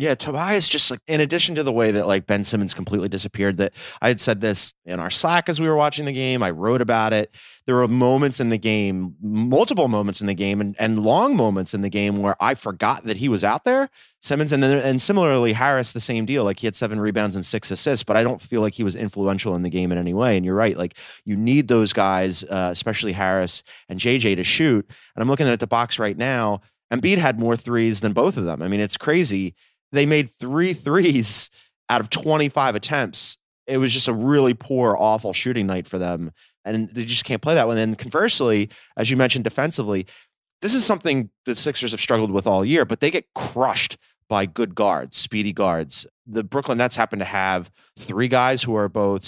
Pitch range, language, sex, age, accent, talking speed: 100-125 Hz, English, male, 30-49, American, 230 wpm